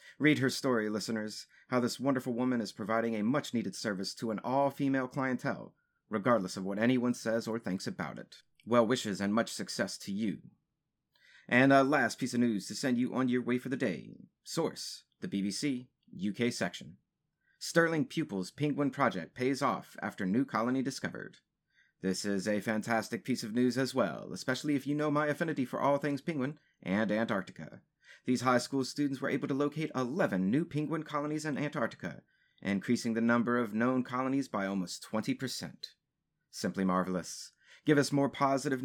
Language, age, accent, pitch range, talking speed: English, 30-49, American, 110-140 Hz, 175 wpm